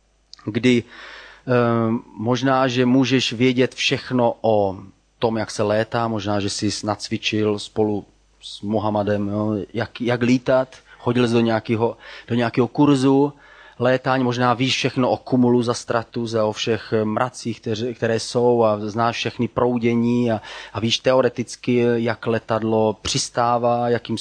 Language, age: Czech, 30-49